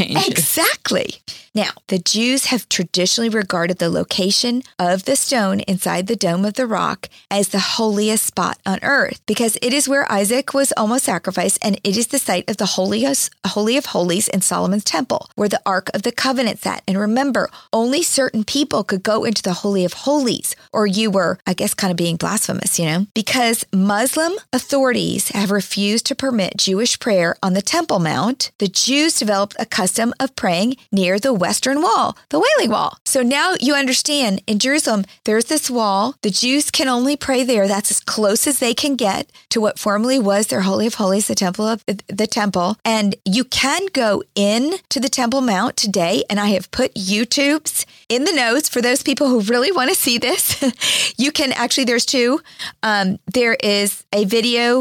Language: English